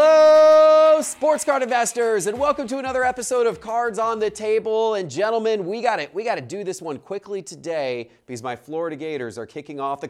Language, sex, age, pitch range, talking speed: English, male, 30-49, 140-195 Hz, 200 wpm